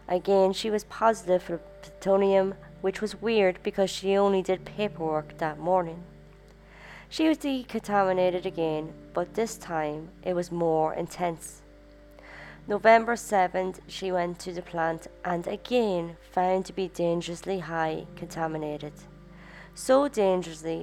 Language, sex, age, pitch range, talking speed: English, female, 20-39, 165-195 Hz, 125 wpm